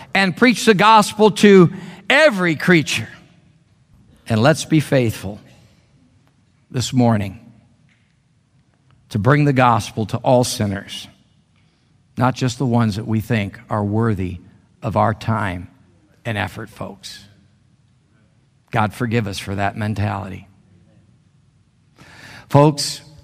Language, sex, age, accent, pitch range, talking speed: English, male, 50-69, American, 115-140 Hz, 110 wpm